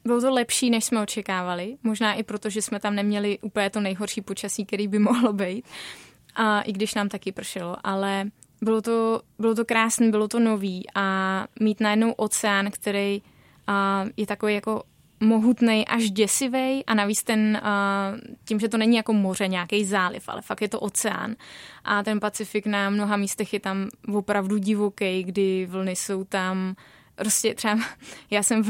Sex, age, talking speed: female, 20-39, 175 wpm